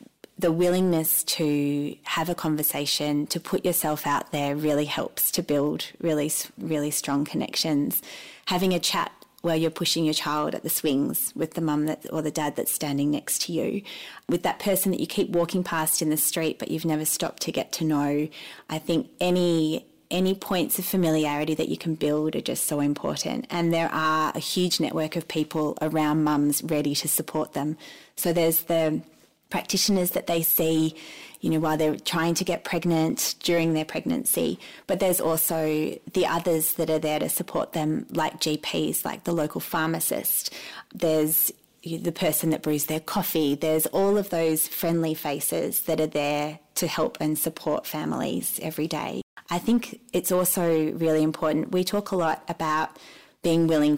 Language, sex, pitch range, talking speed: English, female, 155-175 Hz, 180 wpm